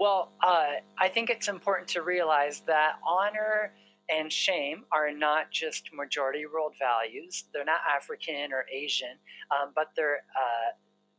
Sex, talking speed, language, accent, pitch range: male, 145 wpm, English, American, 145-195 Hz